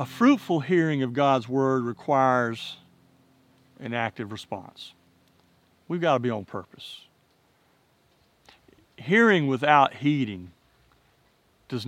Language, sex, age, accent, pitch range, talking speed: English, male, 40-59, American, 120-150 Hz, 95 wpm